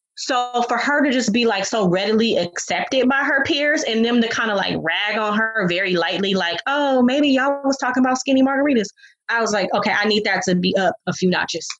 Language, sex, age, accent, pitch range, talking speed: English, female, 20-39, American, 210-275 Hz, 235 wpm